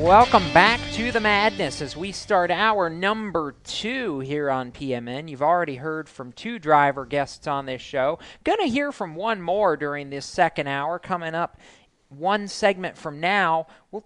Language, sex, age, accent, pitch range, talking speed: English, male, 40-59, American, 140-205 Hz, 175 wpm